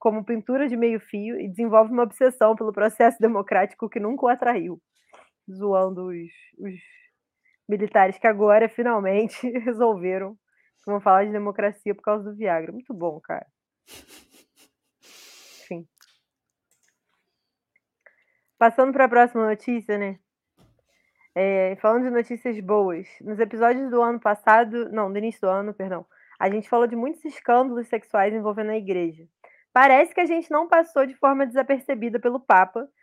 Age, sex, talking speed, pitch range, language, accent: 20-39, female, 140 wpm, 210-250 Hz, Portuguese, Brazilian